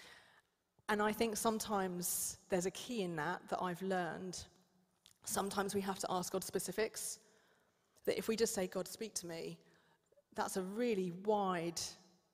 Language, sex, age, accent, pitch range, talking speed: English, female, 30-49, British, 180-210 Hz, 155 wpm